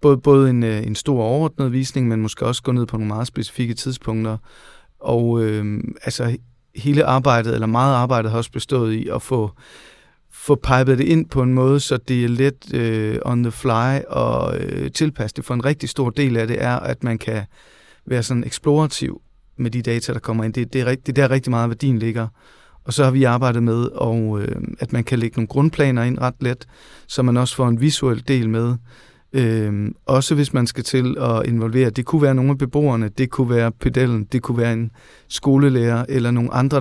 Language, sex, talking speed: Danish, male, 215 wpm